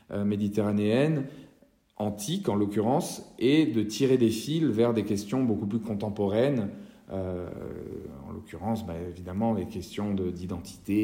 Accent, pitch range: French, 95-115 Hz